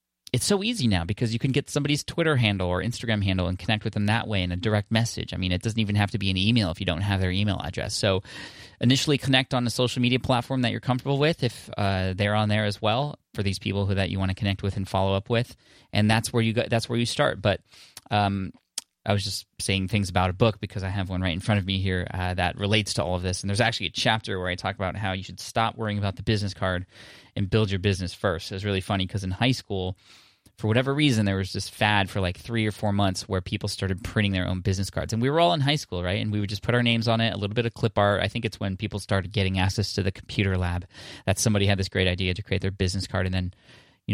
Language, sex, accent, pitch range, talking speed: English, male, American, 95-115 Hz, 285 wpm